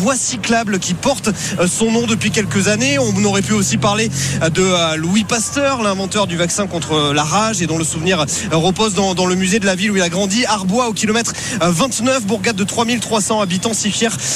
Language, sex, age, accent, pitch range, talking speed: French, male, 30-49, French, 190-230 Hz, 205 wpm